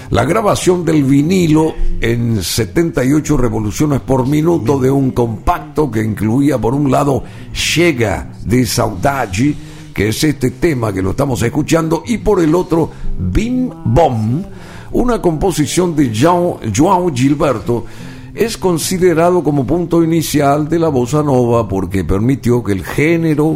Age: 60-79